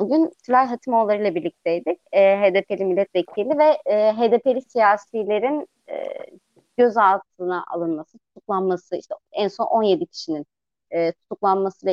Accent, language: native, Turkish